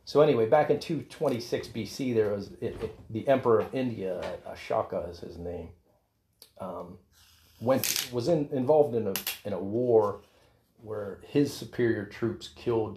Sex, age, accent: male, 40-59, American